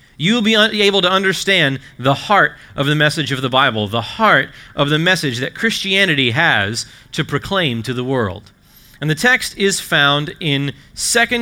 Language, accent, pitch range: English, American, 125-170 Hz